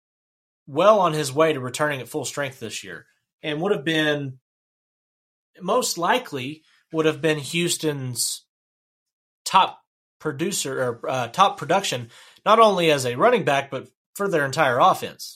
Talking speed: 150 wpm